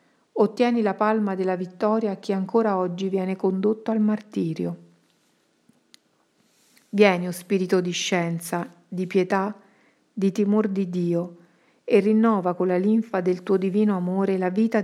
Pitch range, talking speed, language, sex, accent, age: 180-210 Hz, 140 wpm, Italian, female, native, 50-69